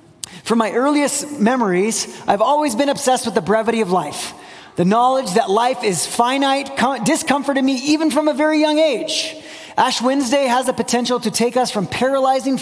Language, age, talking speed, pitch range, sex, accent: English, 30-49, 175 wpm, 185-250 Hz, male, American